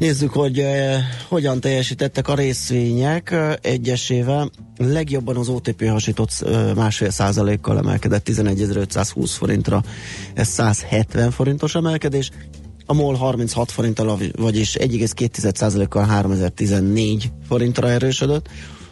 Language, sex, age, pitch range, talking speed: Hungarian, male, 30-49, 100-125 Hz, 95 wpm